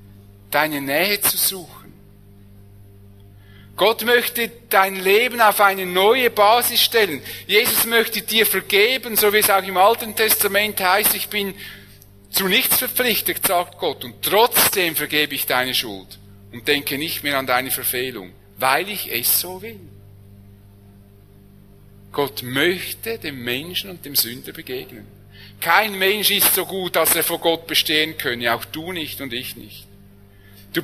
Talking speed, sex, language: 150 wpm, male, English